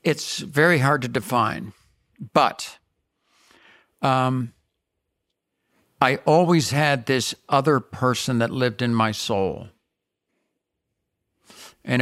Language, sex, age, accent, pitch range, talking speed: English, male, 60-79, American, 115-135 Hz, 95 wpm